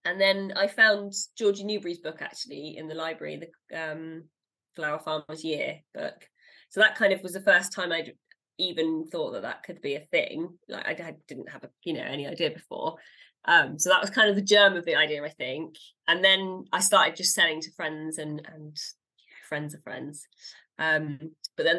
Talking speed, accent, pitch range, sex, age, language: 205 wpm, British, 155-210 Hz, female, 20-39, English